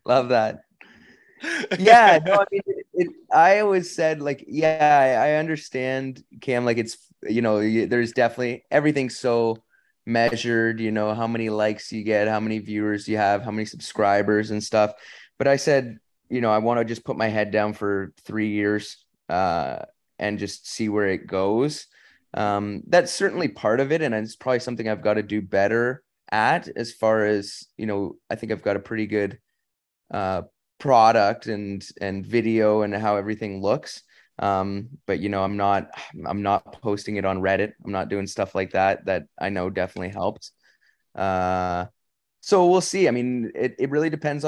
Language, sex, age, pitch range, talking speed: English, male, 20-39, 100-125 Hz, 180 wpm